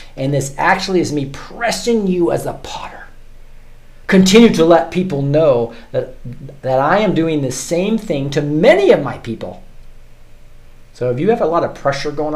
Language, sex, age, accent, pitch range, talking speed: English, male, 40-59, American, 115-175 Hz, 180 wpm